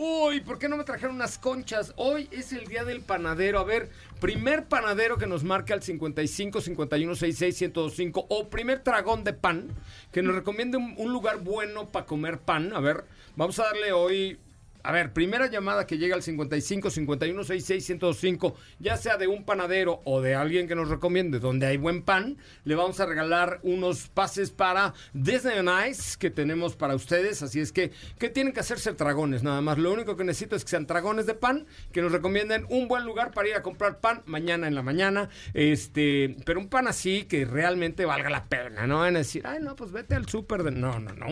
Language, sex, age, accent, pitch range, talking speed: Spanish, male, 50-69, Mexican, 160-215 Hz, 210 wpm